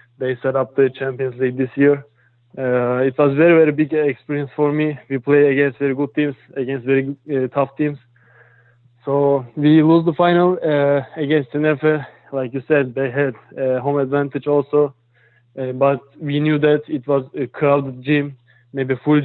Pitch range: 130-145 Hz